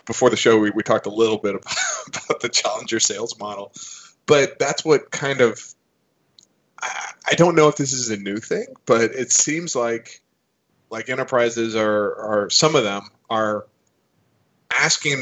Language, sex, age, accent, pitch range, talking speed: English, male, 20-39, American, 105-135 Hz, 170 wpm